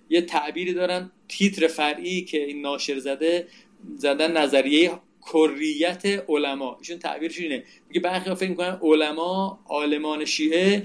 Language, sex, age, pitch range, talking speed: Persian, male, 40-59, 150-185 Hz, 125 wpm